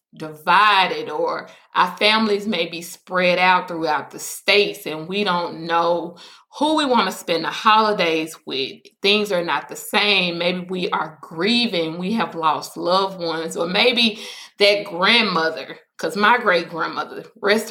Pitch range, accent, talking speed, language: 170-230 Hz, American, 155 wpm, English